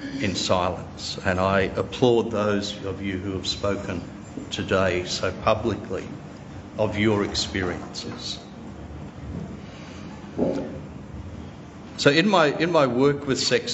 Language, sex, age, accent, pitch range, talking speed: English, male, 50-69, Australian, 100-120 Hz, 110 wpm